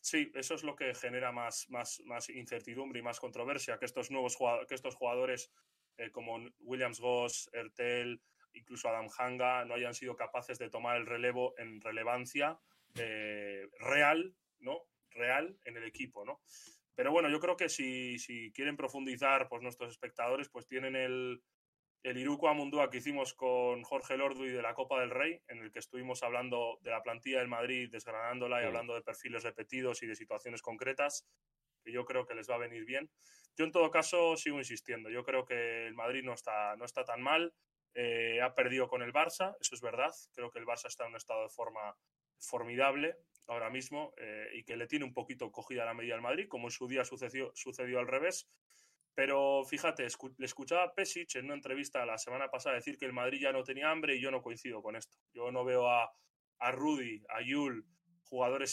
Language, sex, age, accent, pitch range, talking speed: Spanish, male, 20-39, Spanish, 120-135 Hz, 200 wpm